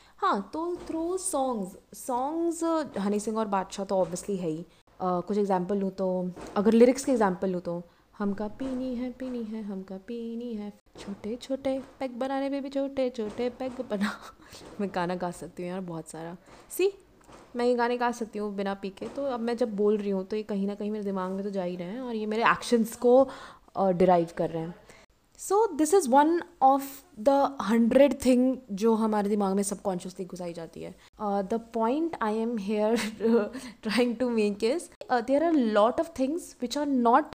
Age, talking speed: 20-39, 195 wpm